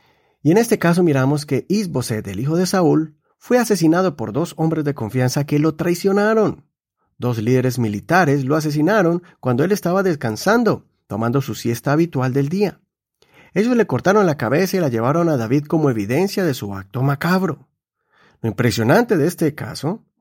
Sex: male